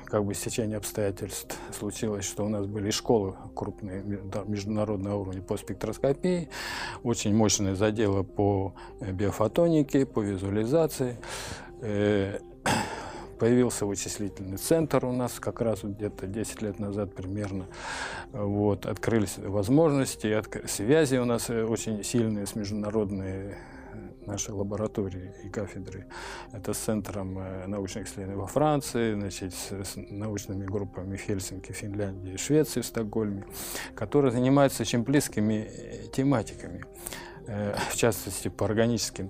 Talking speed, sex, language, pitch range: 110 wpm, male, Russian, 100-115 Hz